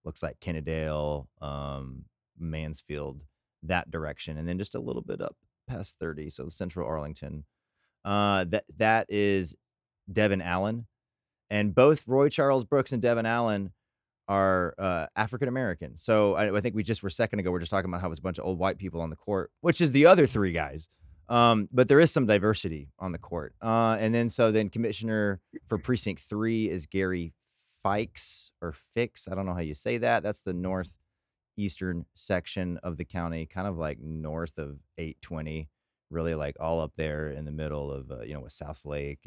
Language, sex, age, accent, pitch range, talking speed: English, male, 30-49, American, 75-105 Hz, 195 wpm